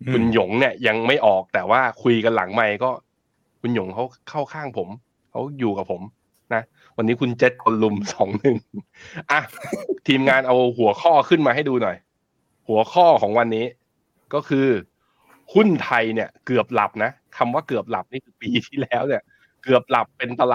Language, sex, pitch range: Thai, male, 110-140 Hz